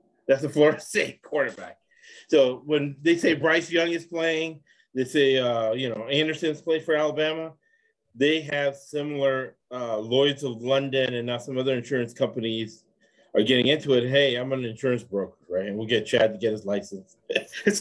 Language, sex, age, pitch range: English, male, 30-49, 115-155 Hz